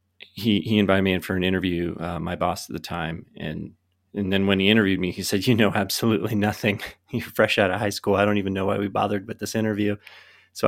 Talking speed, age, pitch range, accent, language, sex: 245 wpm, 30-49, 90-100 Hz, American, English, male